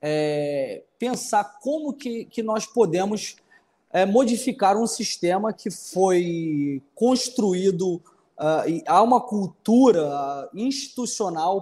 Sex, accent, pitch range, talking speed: male, Brazilian, 170-225 Hz, 85 wpm